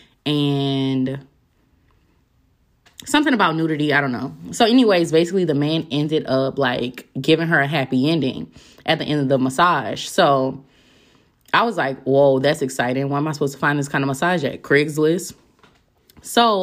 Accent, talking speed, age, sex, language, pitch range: American, 165 wpm, 20-39, female, English, 135-175 Hz